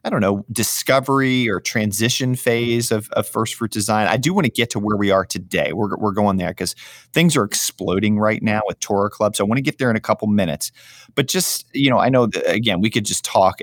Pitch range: 95-125 Hz